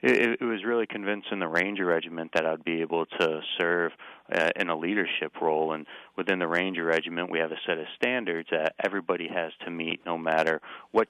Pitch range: 80-90 Hz